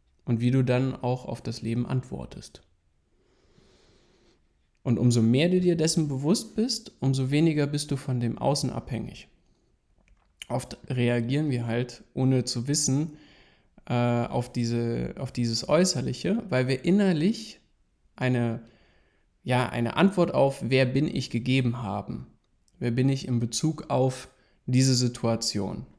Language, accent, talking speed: German, German, 135 wpm